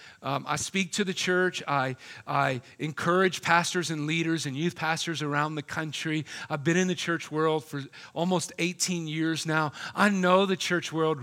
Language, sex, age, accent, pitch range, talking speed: English, male, 40-59, American, 150-195 Hz, 180 wpm